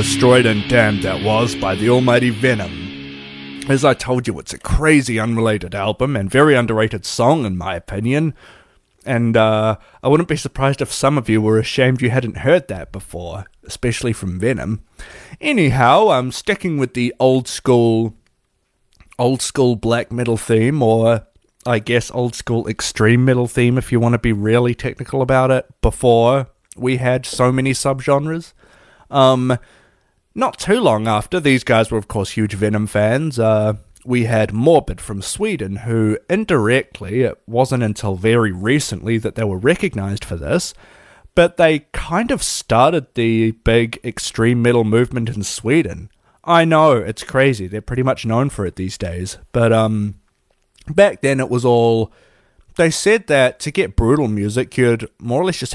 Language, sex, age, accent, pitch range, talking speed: English, male, 30-49, Australian, 110-130 Hz, 165 wpm